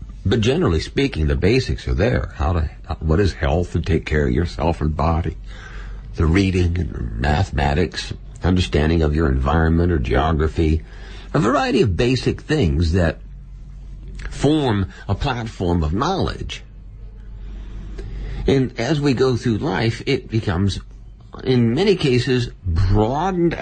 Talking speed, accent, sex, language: 130 wpm, American, male, English